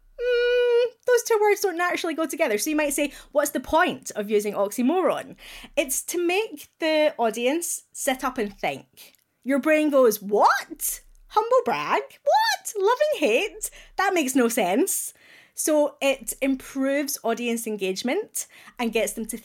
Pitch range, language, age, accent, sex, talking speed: 215-325 Hz, English, 20-39, British, female, 150 wpm